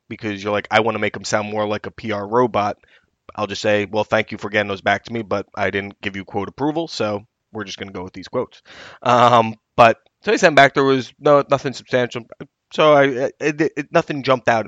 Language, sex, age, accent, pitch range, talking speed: English, male, 20-39, American, 110-150 Hz, 250 wpm